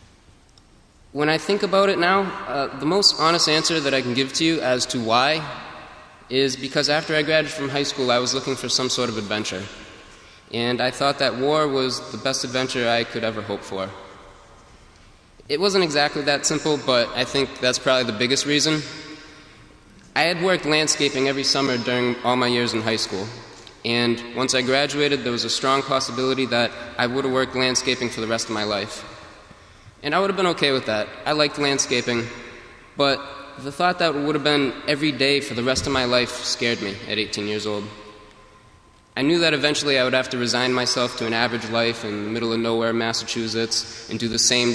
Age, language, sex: 20-39, English, male